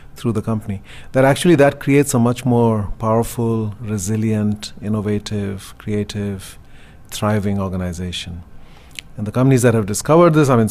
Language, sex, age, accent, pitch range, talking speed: English, male, 40-59, Indian, 100-120 Hz, 140 wpm